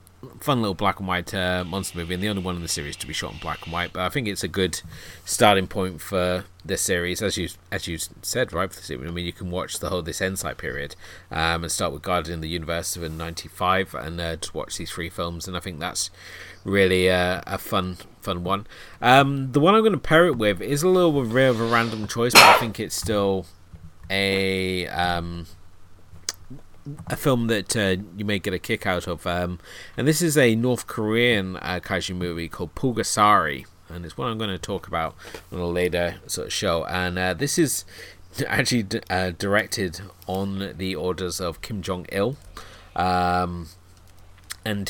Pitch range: 85-105 Hz